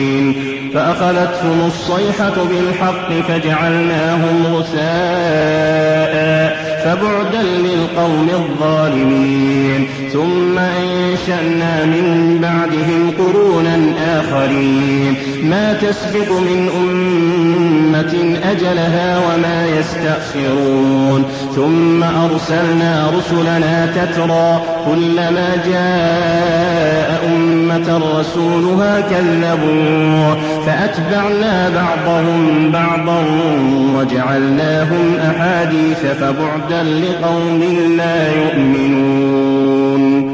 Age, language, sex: 30-49, Arabic, male